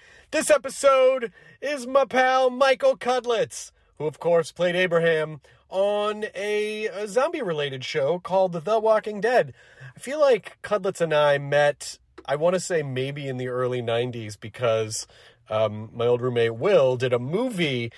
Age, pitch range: 30-49, 125-195 Hz